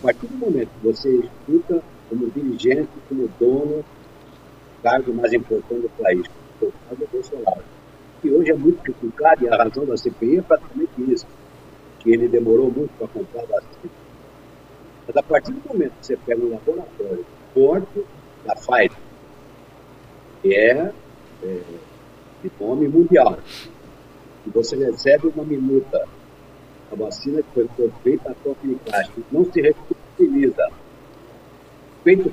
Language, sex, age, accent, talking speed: Portuguese, male, 60-79, Brazilian, 140 wpm